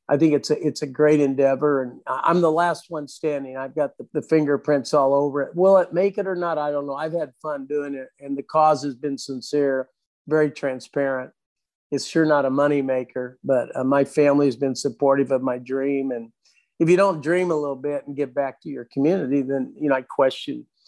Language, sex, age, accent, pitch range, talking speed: English, male, 50-69, American, 135-155 Hz, 225 wpm